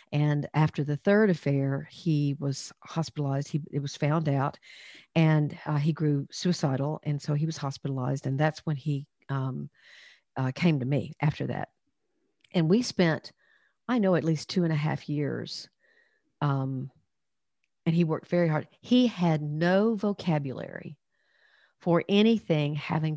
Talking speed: 150 wpm